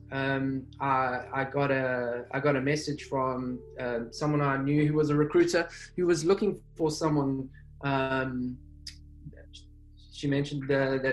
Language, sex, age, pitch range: Chinese, male, 20-39, 125-145 Hz